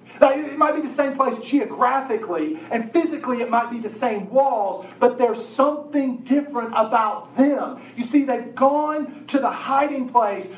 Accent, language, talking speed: American, English, 165 wpm